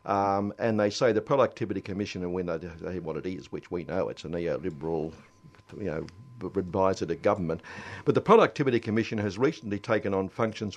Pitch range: 90-115 Hz